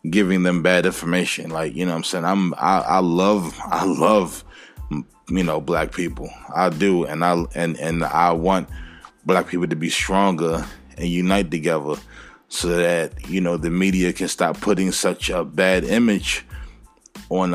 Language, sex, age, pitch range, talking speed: English, male, 20-39, 85-105 Hz, 170 wpm